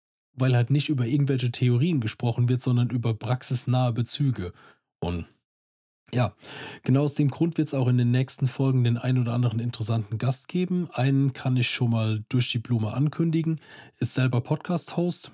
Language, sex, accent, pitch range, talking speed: German, male, German, 115-140 Hz, 170 wpm